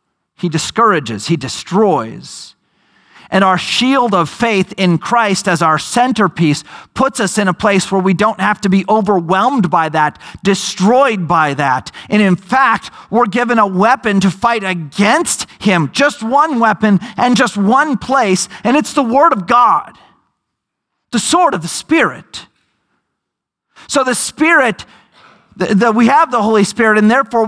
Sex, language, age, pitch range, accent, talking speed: male, English, 40-59, 195-260 Hz, American, 155 wpm